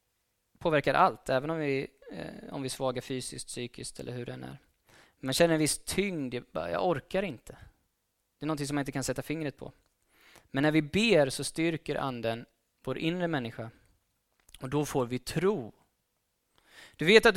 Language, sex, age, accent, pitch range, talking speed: Swedish, male, 20-39, native, 120-160 Hz, 185 wpm